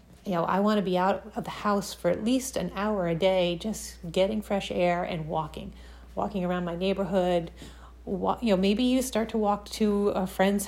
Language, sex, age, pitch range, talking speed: English, female, 30-49, 180-215 Hz, 210 wpm